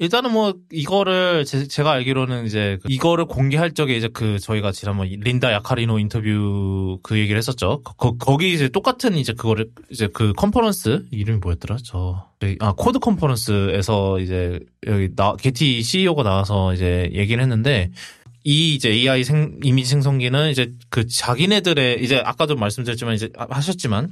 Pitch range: 110-170 Hz